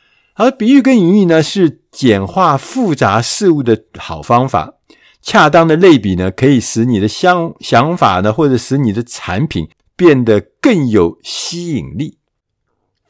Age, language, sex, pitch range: 50-69, Chinese, male, 115-160 Hz